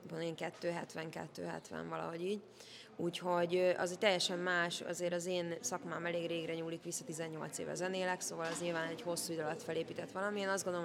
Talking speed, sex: 170 wpm, female